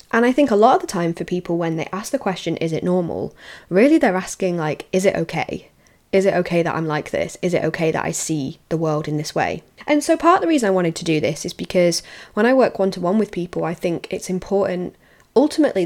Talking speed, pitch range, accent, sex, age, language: 260 wpm, 165-210 Hz, British, female, 20-39, English